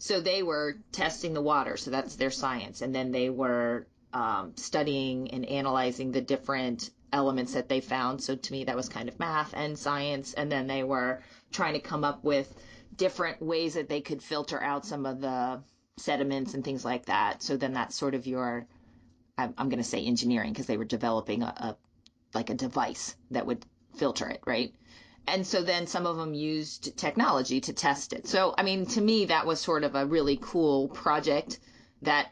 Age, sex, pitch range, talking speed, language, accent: 30-49, female, 130-155 Hz, 200 wpm, English, American